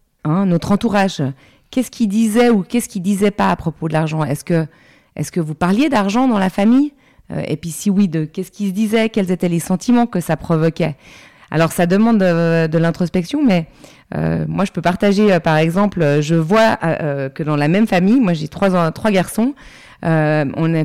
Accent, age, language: French, 30-49, French